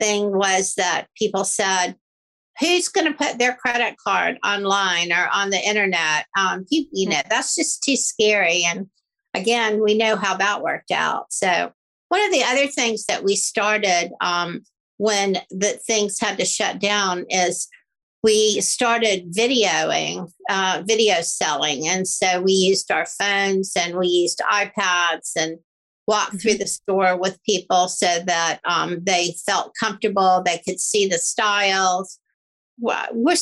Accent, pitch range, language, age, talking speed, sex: American, 185-220 Hz, English, 50-69, 155 wpm, female